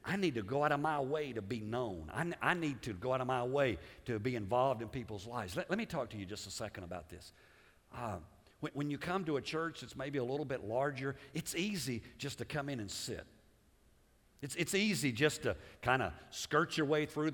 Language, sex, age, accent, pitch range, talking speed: English, male, 50-69, American, 110-160 Hz, 240 wpm